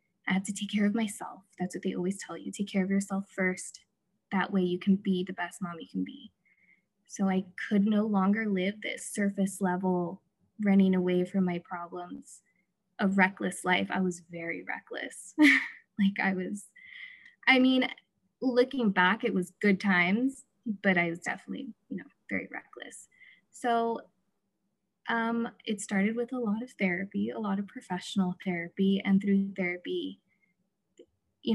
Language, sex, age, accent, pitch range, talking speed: English, female, 20-39, American, 185-225 Hz, 165 wpm